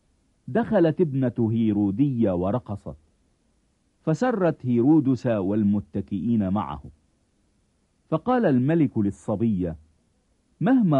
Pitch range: 90-140 Hz